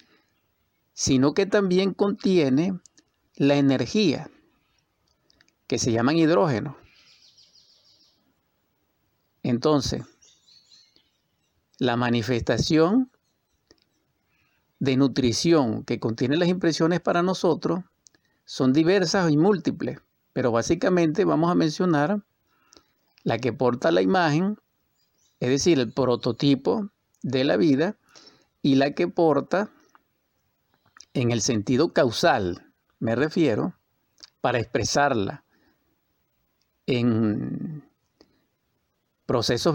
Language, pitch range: Spanish, 125-180 Hz